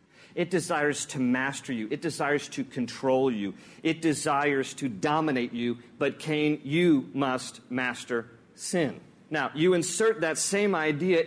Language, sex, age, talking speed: English, male, 40-59, 145 wpm